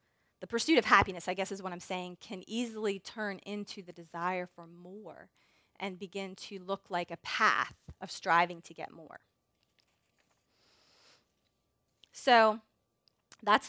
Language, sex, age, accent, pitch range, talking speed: English, female, 30-49, American, 180-215 Hz, 140 wpm